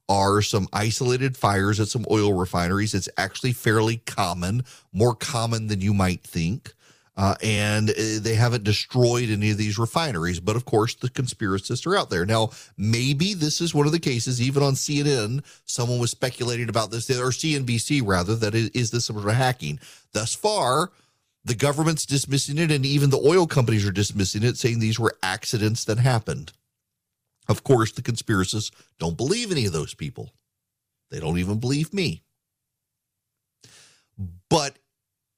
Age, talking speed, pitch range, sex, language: 40-59, 165 wpm, 100-130 Hz, male, English